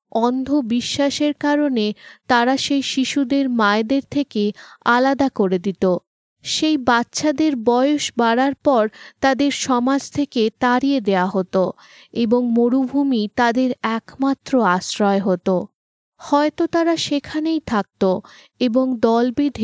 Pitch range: 210-270 Hz